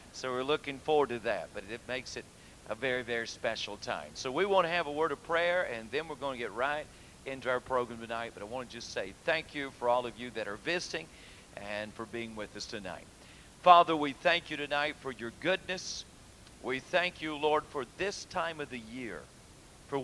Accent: American